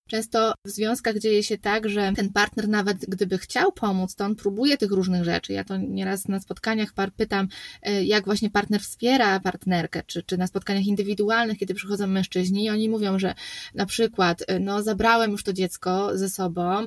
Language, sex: Polish, female